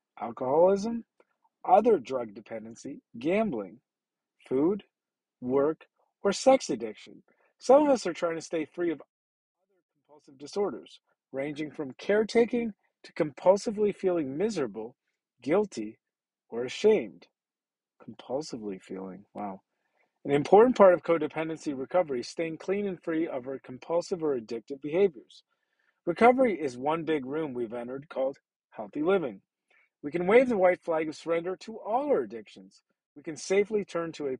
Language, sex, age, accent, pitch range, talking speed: English, male, 40-59, American, 145-200 Hz, 140 wpm